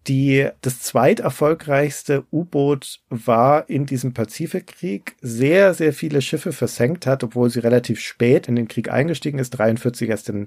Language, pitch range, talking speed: German, 125-150 Hz, 150 wpm